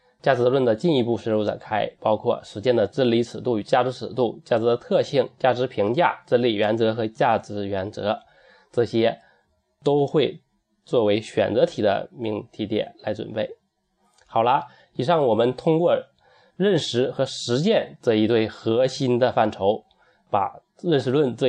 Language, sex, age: Chinese, male, 20-39